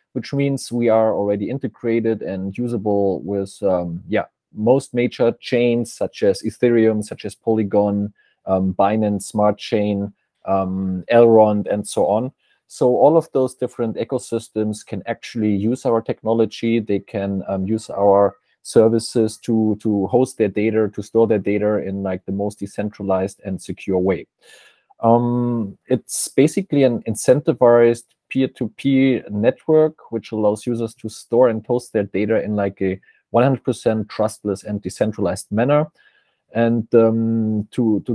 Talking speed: 140 wpm